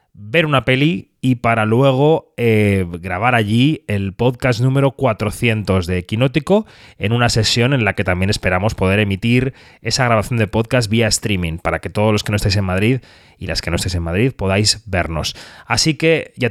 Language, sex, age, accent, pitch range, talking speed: Spanish, male, 30-49, Spanish, 95-130 Hz, 190 wpm